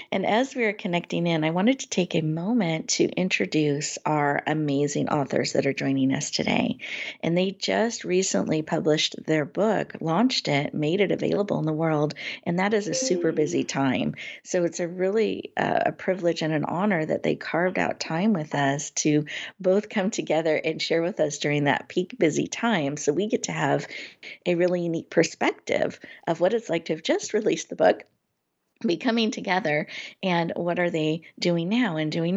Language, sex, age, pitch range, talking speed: English, female, 50-69, 155-215 Hz, 195 wpm